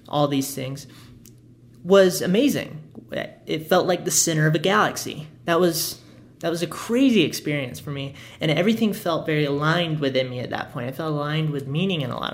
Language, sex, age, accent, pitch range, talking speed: English, male, 30-49, American, 125-155 Hz, 195 wpm